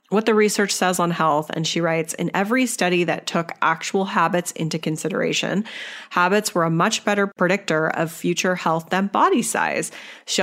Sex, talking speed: female, 180 wpm